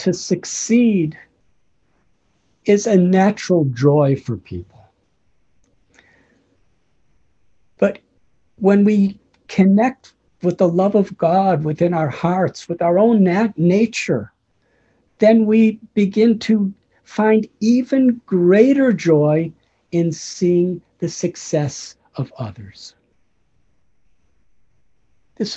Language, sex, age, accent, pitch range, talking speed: English, male, 60-79, American, 150-225 Hz, 90 wpm